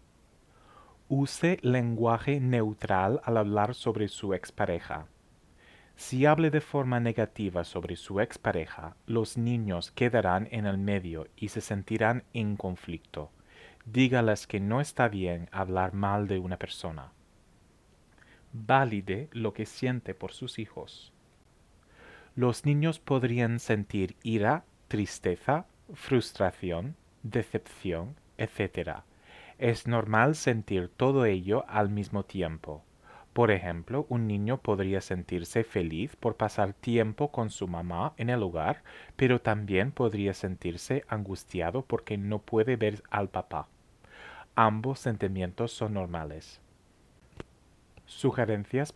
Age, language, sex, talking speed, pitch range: 30-49, English, male, 115 wpm, 95-120 Hz